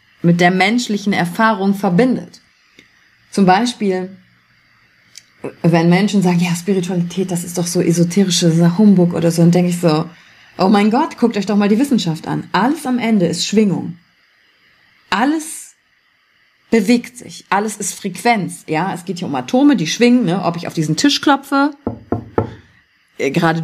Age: 30-49